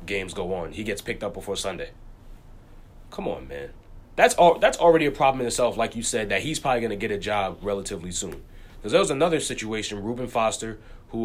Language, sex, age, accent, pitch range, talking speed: English, male, 20-39, American, 100-150 Hz, 220 wpm